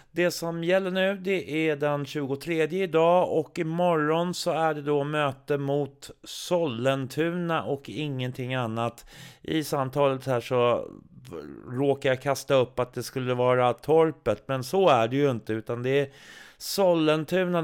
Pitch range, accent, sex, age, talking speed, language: 125-160 Hz, native, male, 30-49, 150 wpm, Swedish